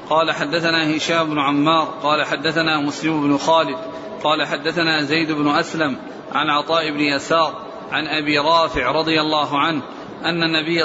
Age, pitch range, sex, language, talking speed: 40-59, 150-165 Hz, male, Arabic, 150 wpm